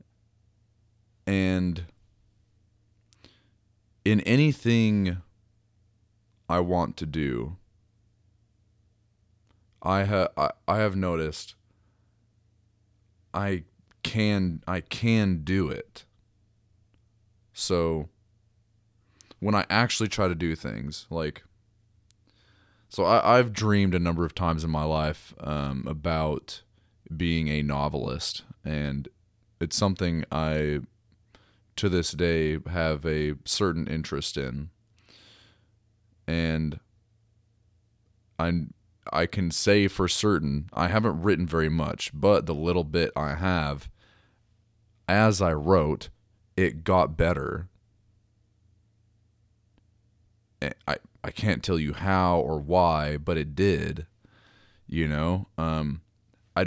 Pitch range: 85-105 Hz